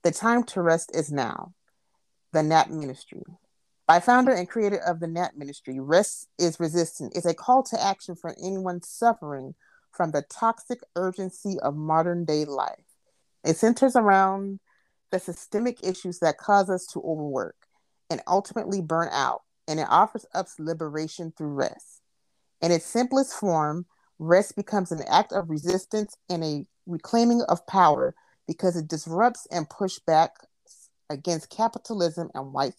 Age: 40-59